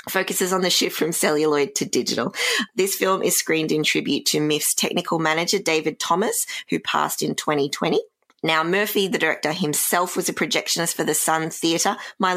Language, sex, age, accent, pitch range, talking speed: English, female, 20-39, Australian, 145-190 Hz, 180 wpm